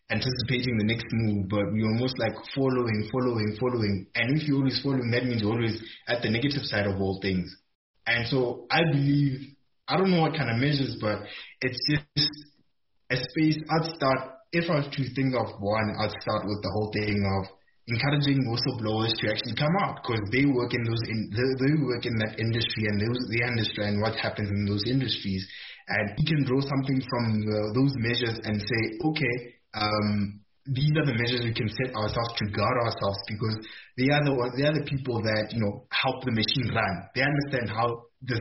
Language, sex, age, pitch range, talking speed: English, male, 20-39, 110-135 Hz, 200 wpm